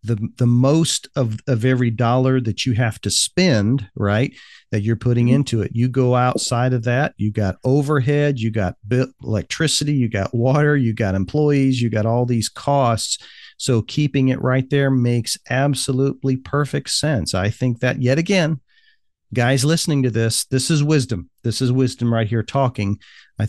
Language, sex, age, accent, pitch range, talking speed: English, male, 40-59, American, 115-135 Hz, 175 wpm